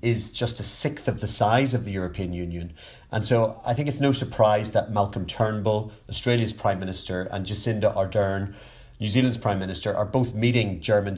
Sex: male